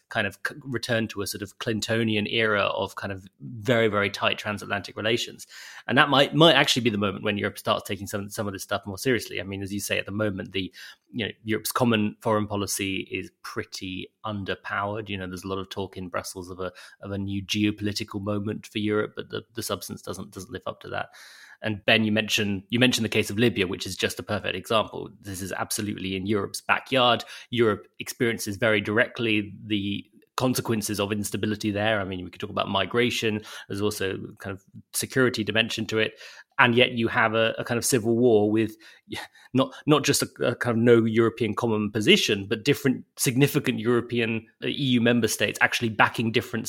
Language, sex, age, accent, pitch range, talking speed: English, male, 20-39, British, 105-120 Hz, 205 wpm